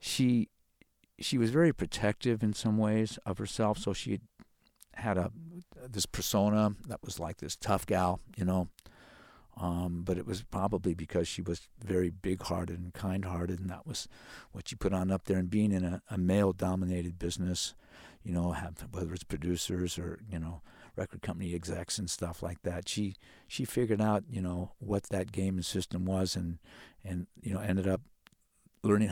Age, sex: 50-69, male